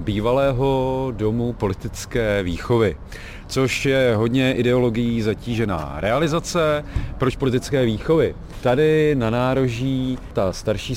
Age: 40-59